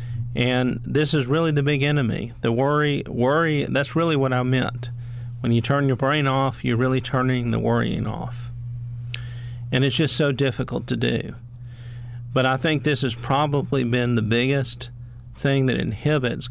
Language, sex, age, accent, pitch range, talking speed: English, male, 40-59, American, 120-135 Hz, 165 wpm